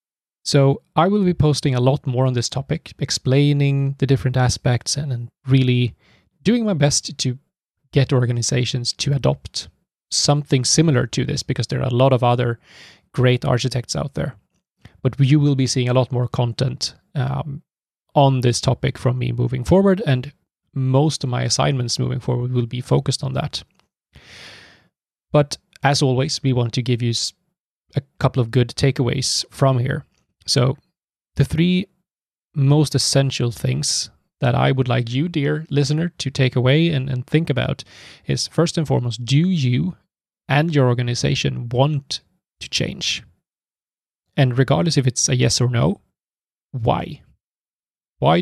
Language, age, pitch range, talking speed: English, 20-39, 125-145 Hz, 155 wpm